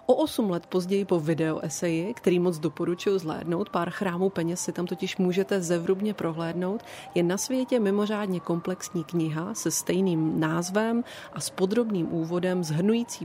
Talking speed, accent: 150 wpm, native